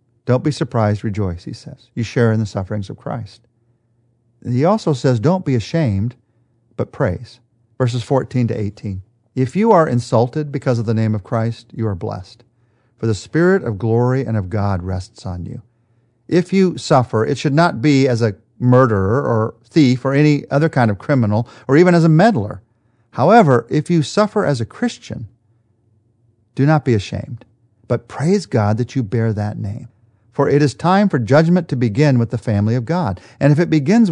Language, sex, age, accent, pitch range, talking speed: English, male, 40-59, American, 115-140 Hz, 190 wpm